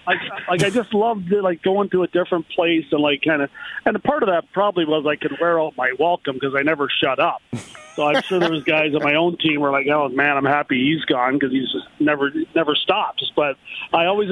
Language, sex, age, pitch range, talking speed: English, male, 40-59, 145-175 Hz, 255 wpm